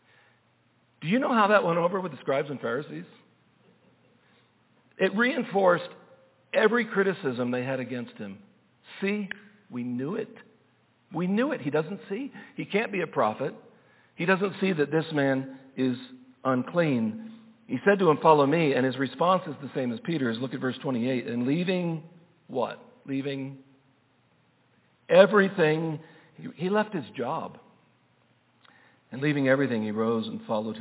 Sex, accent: male, American